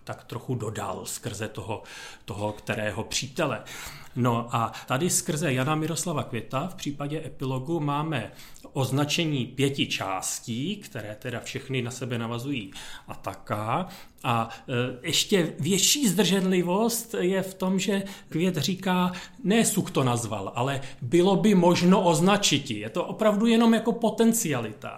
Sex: male